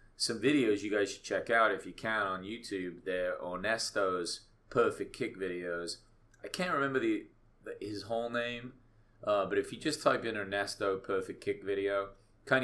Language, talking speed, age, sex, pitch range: English, 180 wpm, 30-49, male, 90-115 Hz